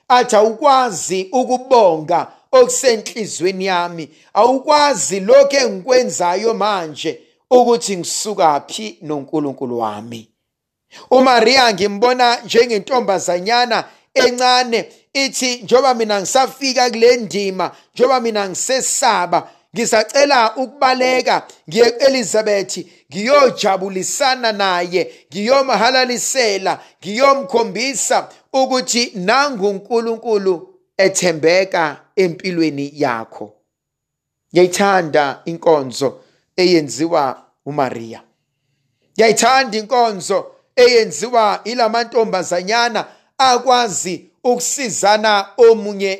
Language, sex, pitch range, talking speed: English, male, 175-250 Hz, 70 wpm